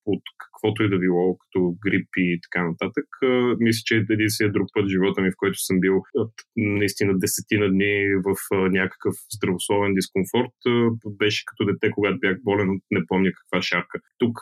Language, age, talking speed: Bulgarian, 20-39, 180 wpm